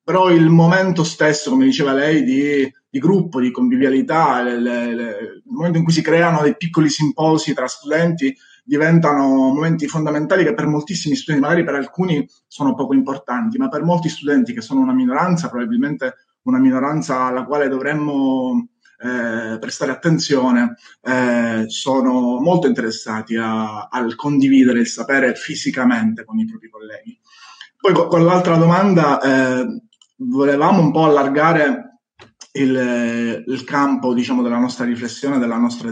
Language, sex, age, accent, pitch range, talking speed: Italian, male, 20-39, native, 130-185 Hz, 140 wpm